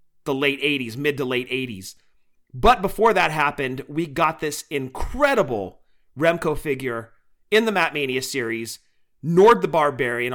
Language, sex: English, male